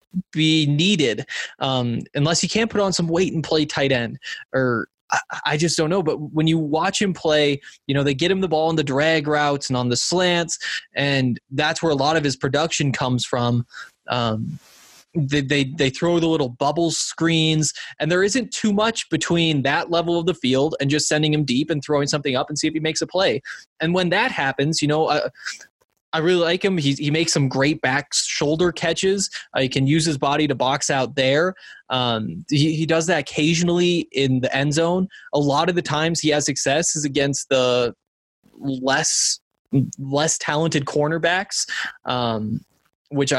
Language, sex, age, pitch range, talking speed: English, male, 20-39, 135-165 Hz, 200 wpm